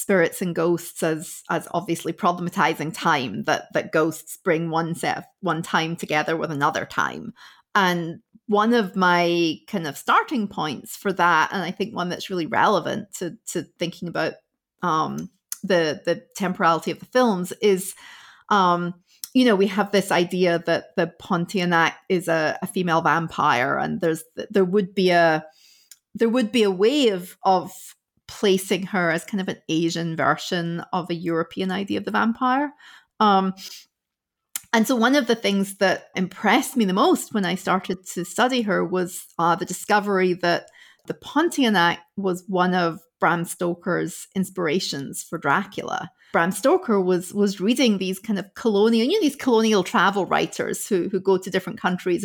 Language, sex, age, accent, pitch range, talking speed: English, female, 40-59, British, 175-210 Hz, 170 wpm